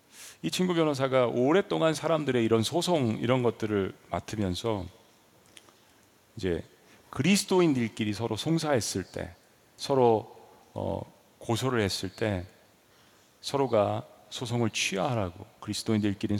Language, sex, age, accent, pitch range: Korean, male, 40-59, native, 105-145 Hz